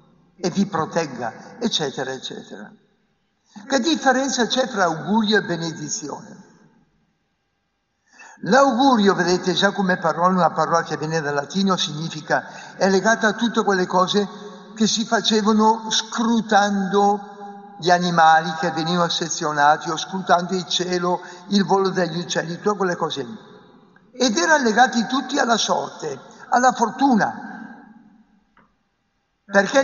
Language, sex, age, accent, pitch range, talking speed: Italian, male, 60-79, native, 175-225 Hz, 120 wpm